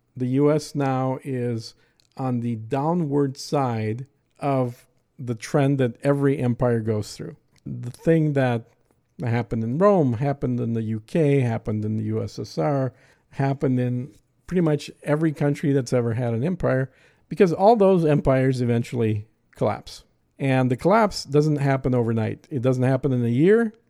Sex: male